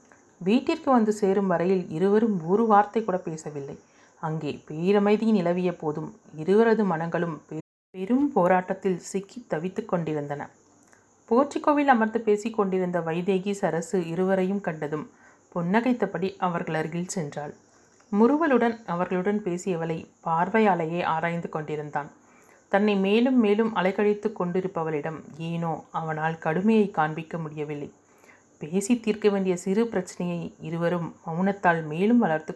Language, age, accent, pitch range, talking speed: Tamil, 30-49, native, 165-215 Hz, 105 wpm